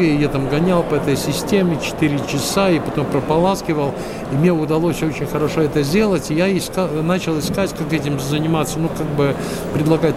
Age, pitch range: 60-79, 135-170 Hz